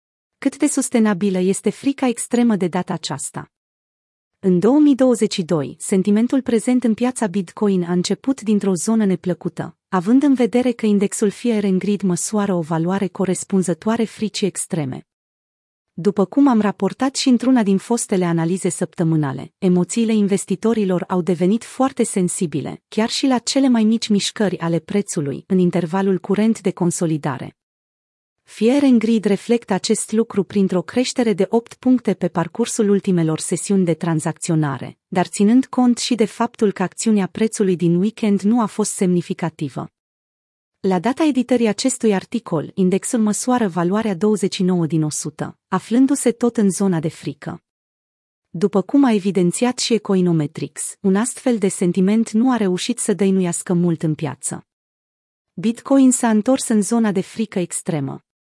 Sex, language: female, Romanian